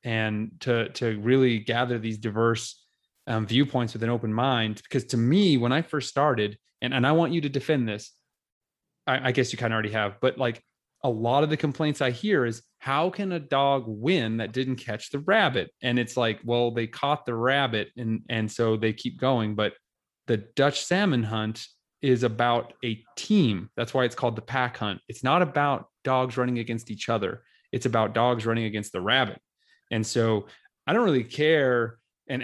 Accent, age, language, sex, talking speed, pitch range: American, 20-39, English, male, 200 wpm, 110-135 Hz